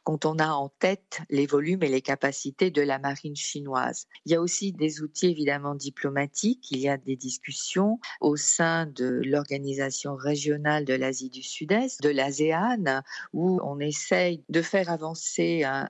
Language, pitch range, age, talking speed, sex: French, 145-180 Hz, 50-69, 170 wpm, female